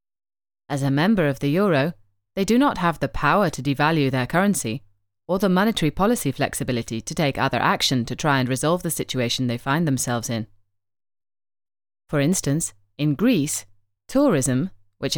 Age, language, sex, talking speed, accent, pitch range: 30-49, English, female, 160 wpm, British, 125-175 Hz